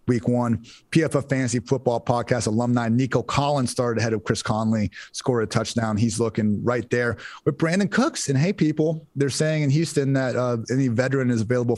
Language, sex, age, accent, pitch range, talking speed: English, male, 30-49, American, 115-140 Hz, 190 wpm